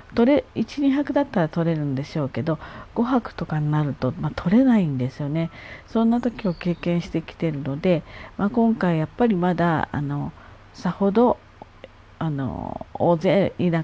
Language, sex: Japanese, female